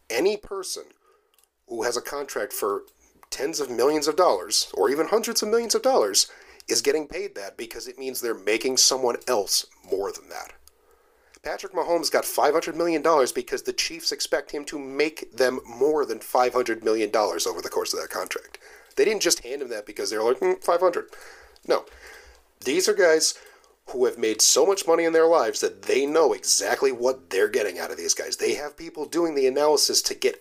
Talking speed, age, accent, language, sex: 195 wpm, 40-59, American, English, male